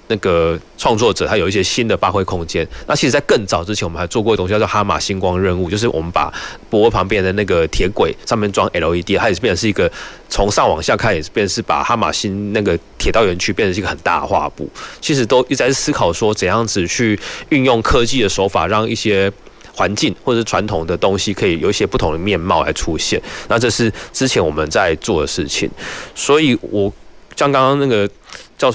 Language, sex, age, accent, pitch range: Chinese, male, 20-39, native, 95-115 Hz